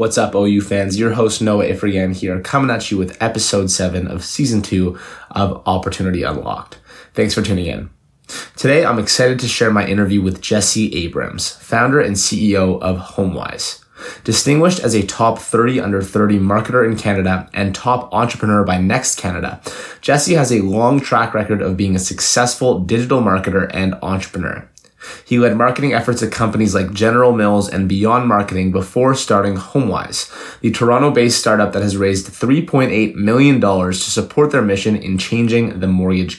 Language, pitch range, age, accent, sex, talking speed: English, 95-120 Hz, 20-39, American, male, 165 wpm